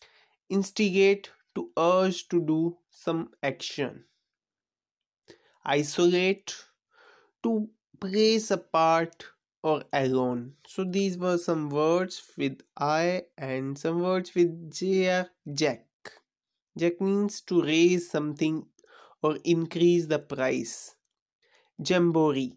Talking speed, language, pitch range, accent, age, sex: 95 wpm, English, 145-190 Hz, Indian, 20-39, male